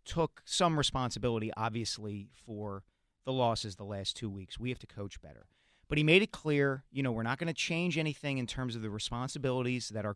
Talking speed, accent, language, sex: 215 wpm, American, English, male